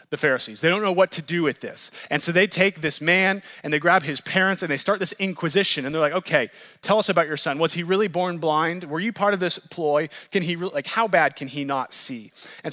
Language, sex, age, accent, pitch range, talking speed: English, male, 30-49, American, 150-190 Hz, 270 wpm